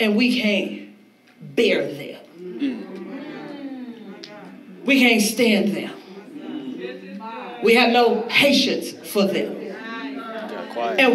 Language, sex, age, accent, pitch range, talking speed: English, female, 40-59, American, 215-270 Hz, 85 wpm